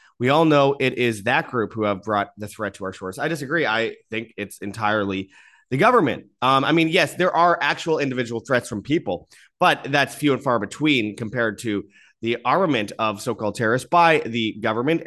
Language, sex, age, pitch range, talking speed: English, male, 30-49, 110-145 Hz, 200 wpm